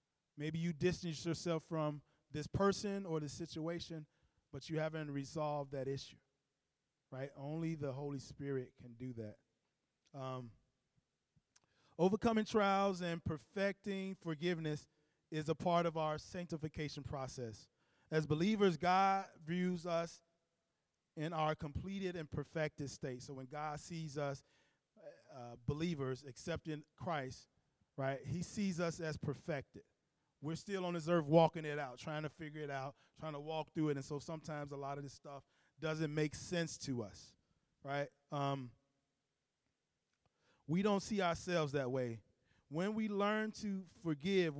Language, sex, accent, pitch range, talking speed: English, male, American, 140-170 Hz, 145 wpm